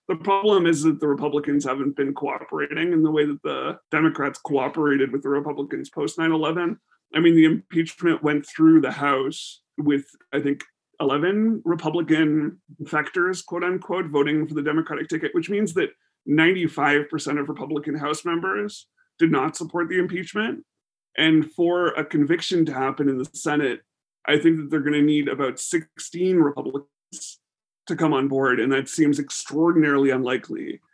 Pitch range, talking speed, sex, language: 145-175 Hz, 165 wpm, male, English